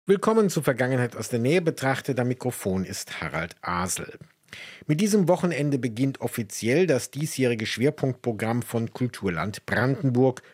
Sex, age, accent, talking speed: male, 50-69, German, 130 wpm